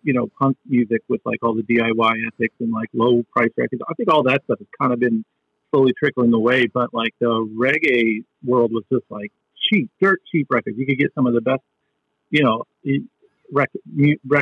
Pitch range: 115-140 Hz